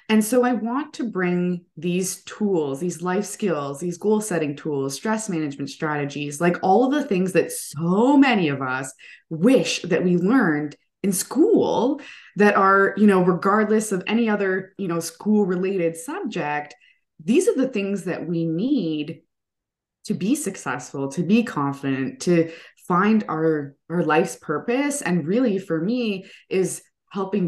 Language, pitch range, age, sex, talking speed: English, 155-215 Hz, 20-39, female, 155 wpm